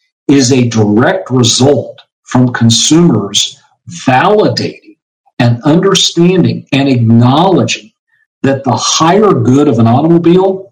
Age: 50-69